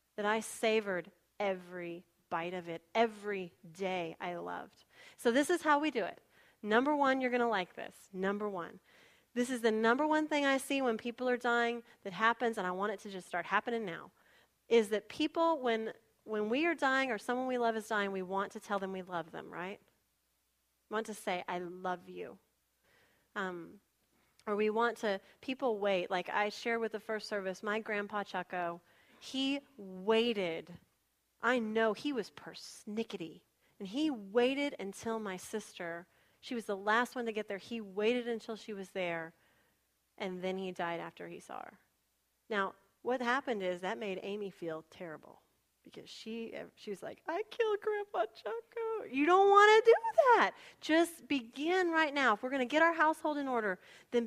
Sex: female